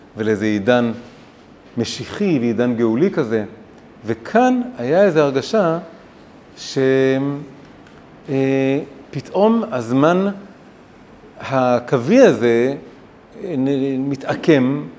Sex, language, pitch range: male, Hebrew, 125-165 Hz